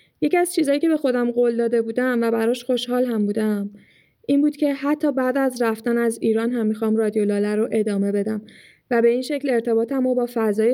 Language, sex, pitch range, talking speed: Persian, female, 215-255 Hz, 210 wpm